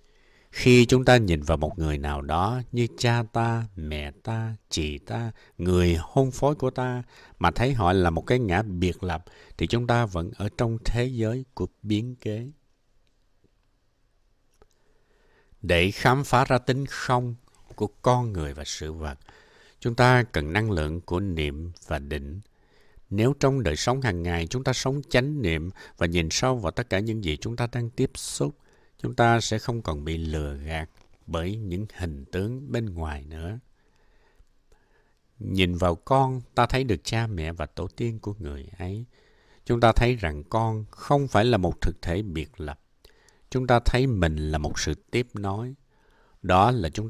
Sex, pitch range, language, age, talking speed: male, 85-120 Hz, Vietnamese, 60-79, 180 wpm